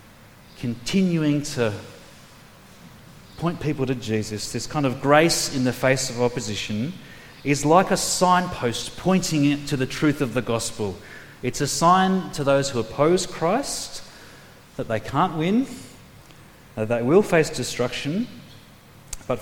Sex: male